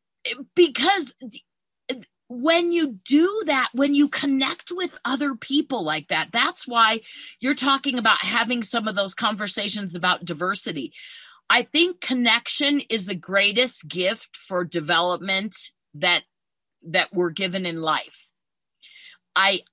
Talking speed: 125 wpm